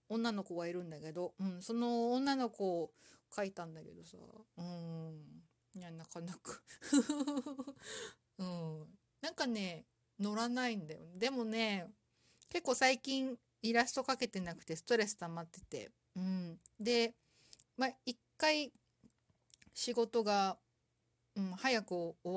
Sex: female